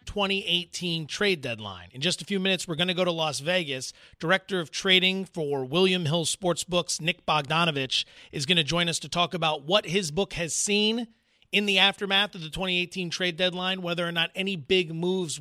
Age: 30-49